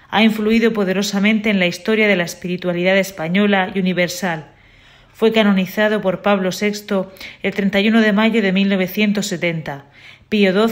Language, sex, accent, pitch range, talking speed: Spanish, female, Spanish, 180-210 Hz, 130 wpm